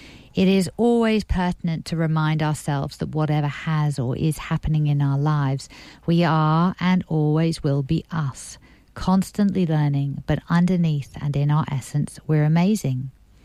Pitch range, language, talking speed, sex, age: 145-170 Hz, English, 145 wpm, female, 50-69